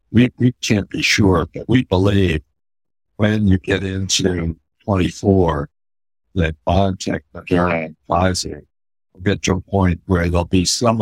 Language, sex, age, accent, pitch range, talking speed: English, male, 60-79, American, 80-95 Hz, 140 wpm